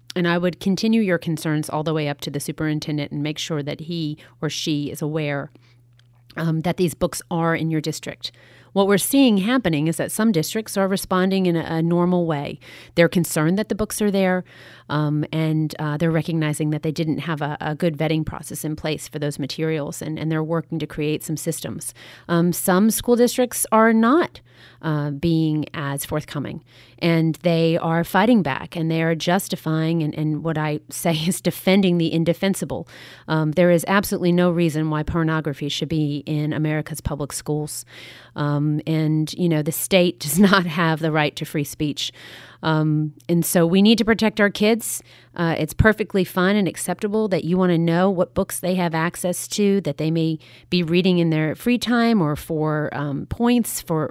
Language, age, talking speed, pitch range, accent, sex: English, 30-49, 195 wpm, 155-180 Hz, American, female